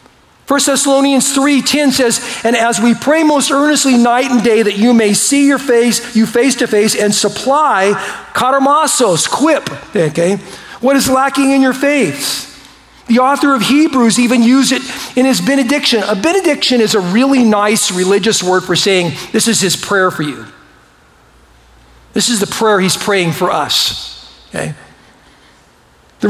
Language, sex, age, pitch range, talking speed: English, male, 40-59, 205-255 Hz, 160 wpm